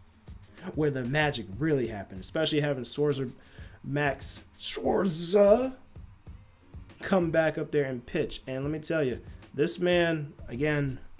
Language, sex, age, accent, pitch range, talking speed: English, male, 20-39, American, 105-155 Hz, 130 wpm